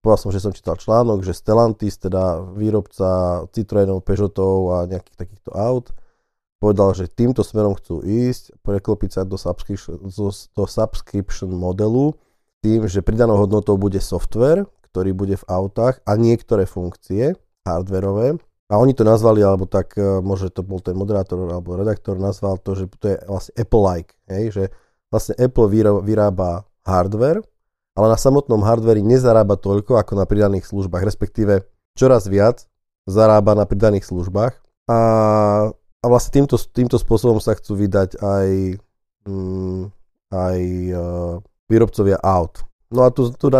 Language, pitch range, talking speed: Slovak, 95-115 Hz, 140 wpm